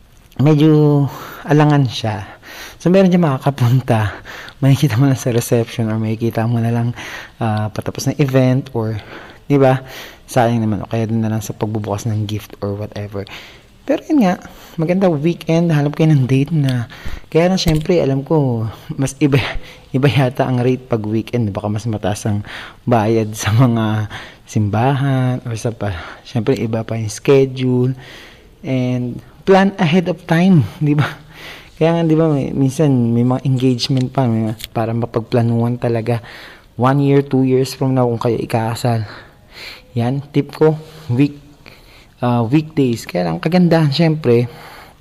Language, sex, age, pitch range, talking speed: Filipino, male, 20-39, 110-140 Hz, 155 wpm